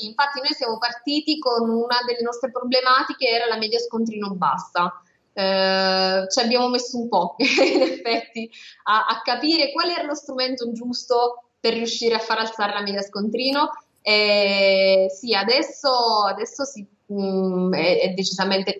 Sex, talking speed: female, 145 wpm